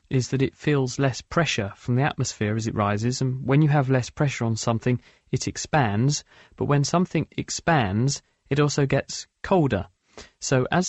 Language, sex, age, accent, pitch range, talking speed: English, male, 30-49, British, 120-145 Hz, 175 wpm